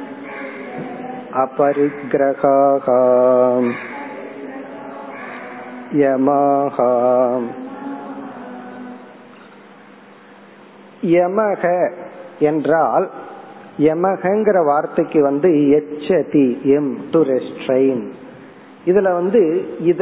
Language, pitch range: Tamil, 140-180 Hz